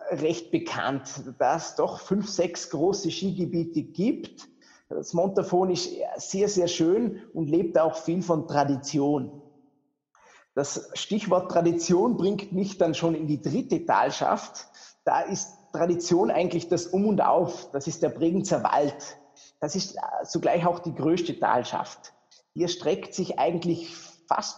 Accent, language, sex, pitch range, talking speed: Austrian, German, male, 160-190 Hz, 140 wpm